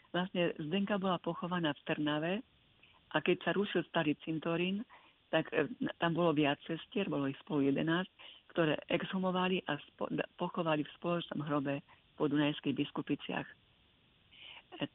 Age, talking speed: 50-69, 135 wpm